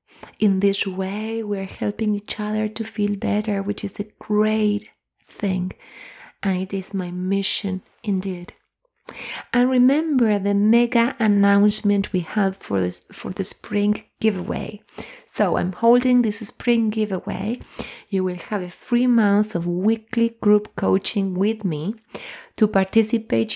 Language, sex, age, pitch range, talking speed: English, female, 30-49, 185-215 Hz, 140 wpm